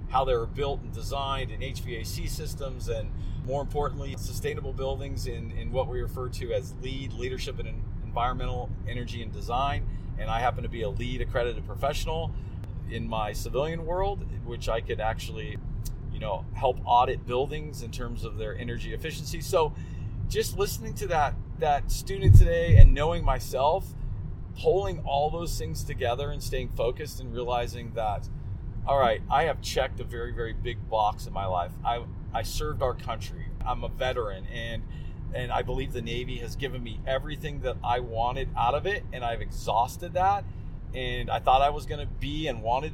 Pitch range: 105-130 Hz